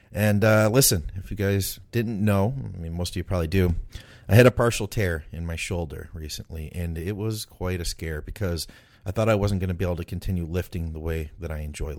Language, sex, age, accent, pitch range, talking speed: English, male, 30-49, American, 90-110 Hz, 235 wpm